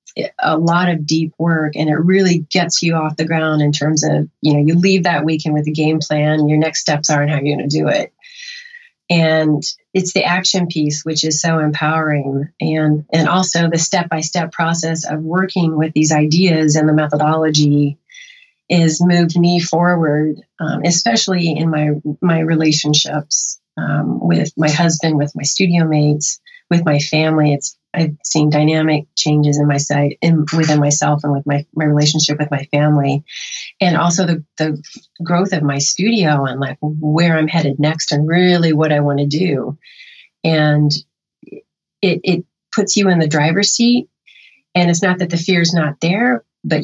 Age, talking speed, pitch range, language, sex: 30-49, 180 wpm, 150-175 Hz, English, female